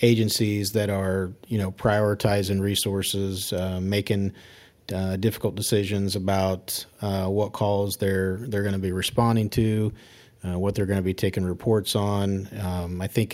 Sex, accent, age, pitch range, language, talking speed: male, American, 40-59, 95-110 Hz, English, 155 wpm